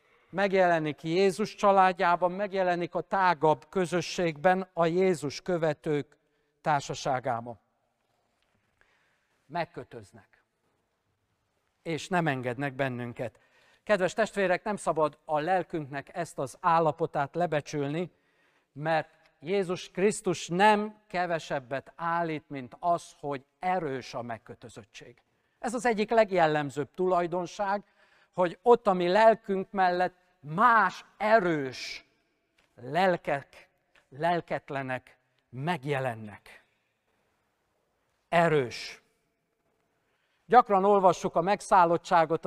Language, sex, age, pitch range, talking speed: Hungarian, male, 50-69, 140-185 Hz, 80 wpm